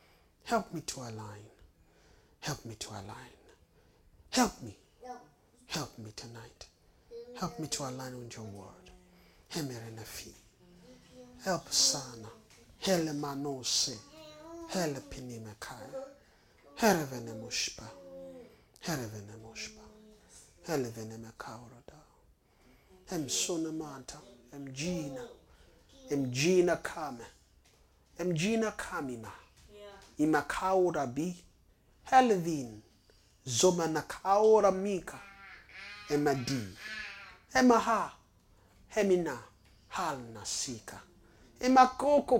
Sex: male